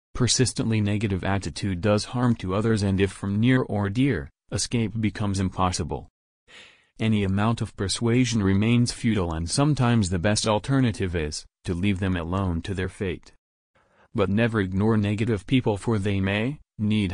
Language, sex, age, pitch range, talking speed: English, male, 30-49, 90-110 Hz, 155 wpm